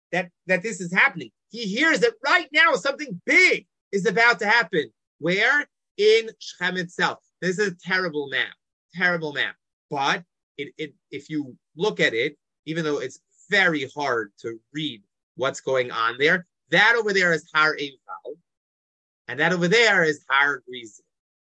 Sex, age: male, 30-49